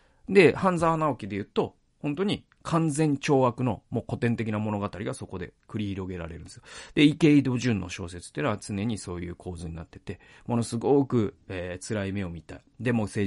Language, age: Japanese, 40-59